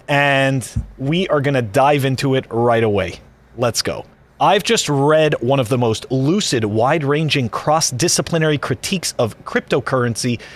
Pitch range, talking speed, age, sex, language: 125-185 Hz, 140 wpm, 30-49, male, English